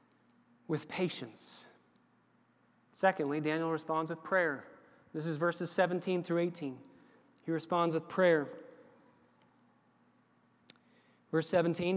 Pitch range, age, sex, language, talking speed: 150-180 Hz, 30-49, male, English, 95 wpm